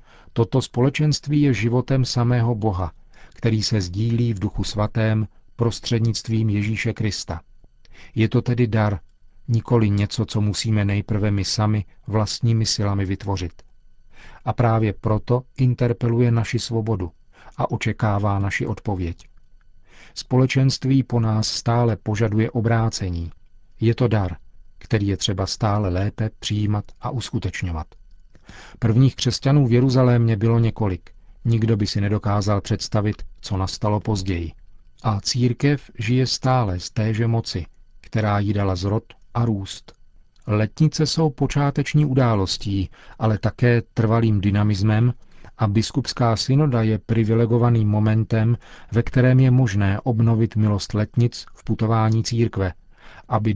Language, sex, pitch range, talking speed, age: Czech, male, 100-120 Hz, 120 wpm, 40-59